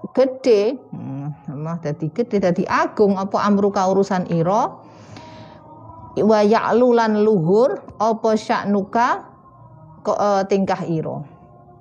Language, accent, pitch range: Indonesian, native, 170-220 Hz